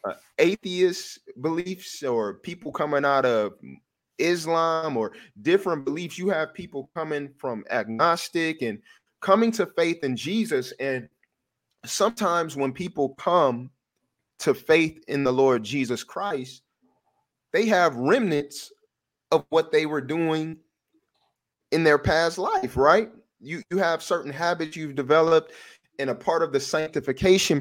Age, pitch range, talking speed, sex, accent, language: 30-49, 130-165 Hz, 135 wpm, male, American, English